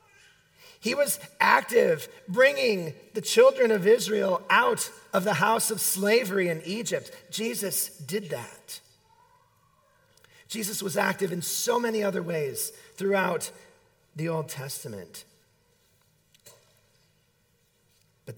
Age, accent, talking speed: 40-59, American, 105 wpm